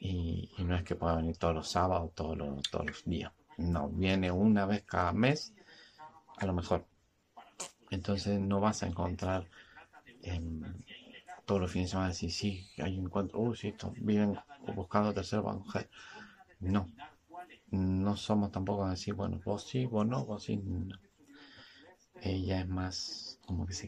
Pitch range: 90-105 Hz